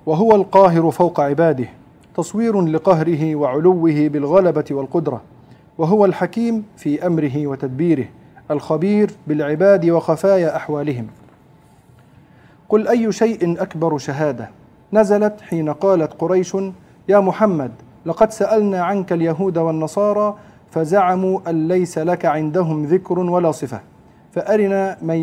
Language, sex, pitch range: Arabic, male, 150-200 Hz